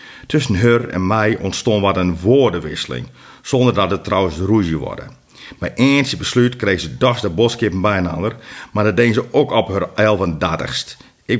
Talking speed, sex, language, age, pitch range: 180 wpm, male, Dutch, 50-69, 95-125 Hz